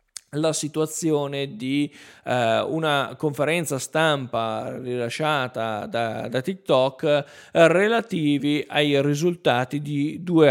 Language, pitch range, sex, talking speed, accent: Italian, 130-180 Hz, male, 95 wpm, native